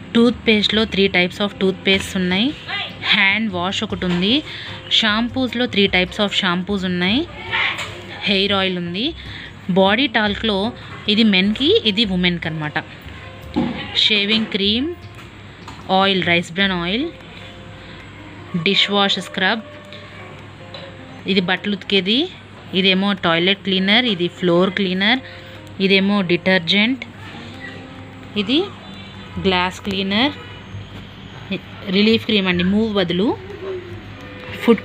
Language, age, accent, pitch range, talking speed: Telugu, 20-39, native, 180-215 Hz, 70 wpm